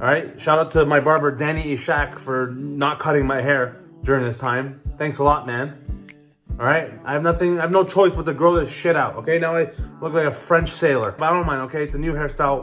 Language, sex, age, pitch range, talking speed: English, male, 20-39, 130-160 Hz, 250 wpm